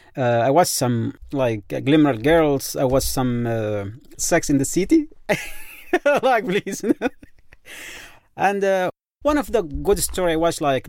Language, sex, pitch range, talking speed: English, male, 125-180 Hz, 150 wpm